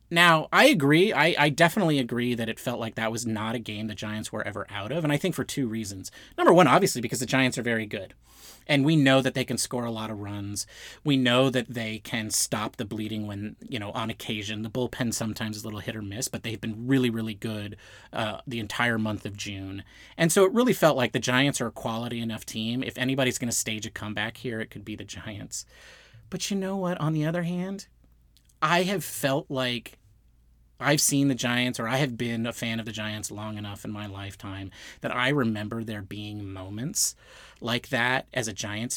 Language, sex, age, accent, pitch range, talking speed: English, male, 30-49, American, 110-135 Hz, 230 wpm